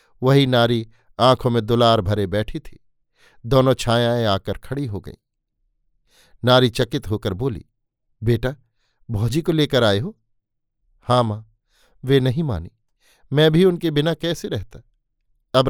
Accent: native